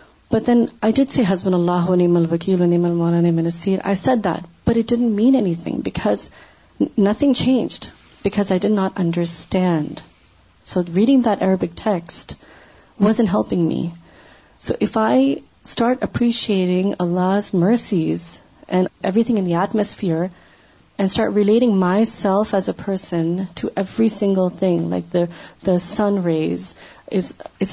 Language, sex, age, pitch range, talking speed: Urdu, female, 30-49, 180-225 Hz, 135 wpm